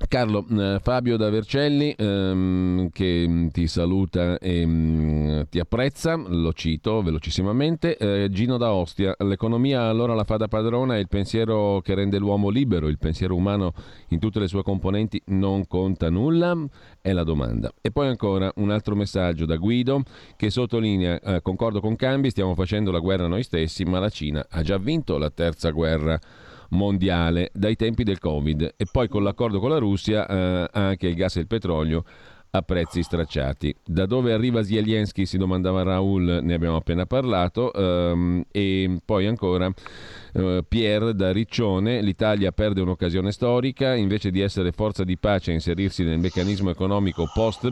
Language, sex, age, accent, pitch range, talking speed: Italian, male, 40-59, native, 90-110 Hz, 165 wpm